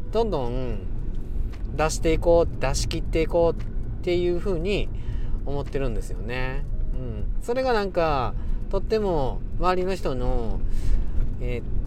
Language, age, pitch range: Japanese, 40-59, 105-170 Hz